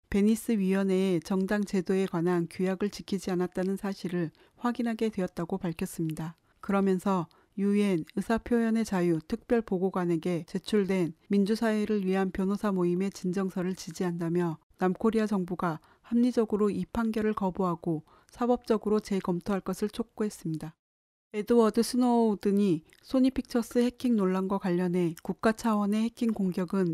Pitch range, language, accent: 185-220 Hz, Korean, native